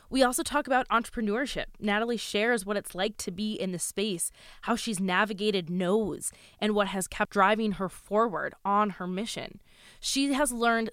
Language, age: English, 20-39